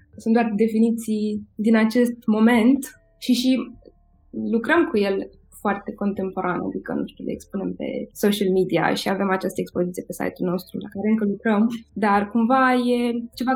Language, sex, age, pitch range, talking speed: Romanian, female, 20-39, 195-235 Hz, 160 wpm